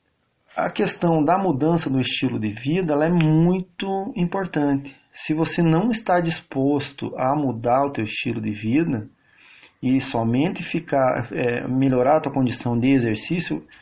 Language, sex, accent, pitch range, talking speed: English, male, Brazilian, 130-165 Hz, 150 wpm